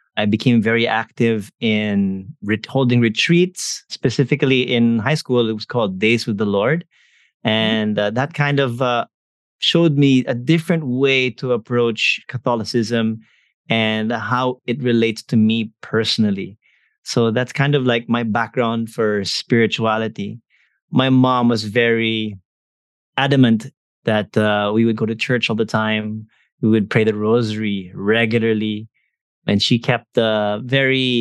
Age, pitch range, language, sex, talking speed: 20-39, 110-125 Hz, English, male, 140 wpm